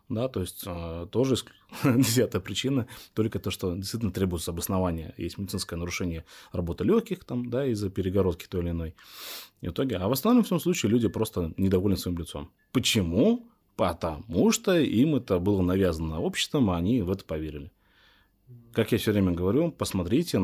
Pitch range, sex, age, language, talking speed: 90-115 Hz, male, 20-39, Russian, 165 wpm